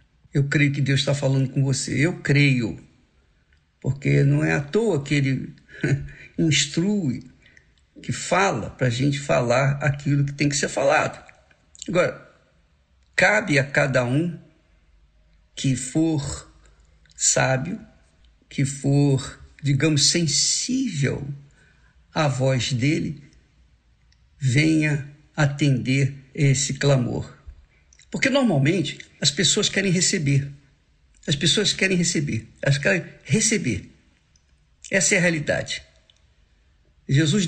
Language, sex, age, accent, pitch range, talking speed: Portuguese, male, 50-69, Brazilian, 130-165 Hz, 105 wpm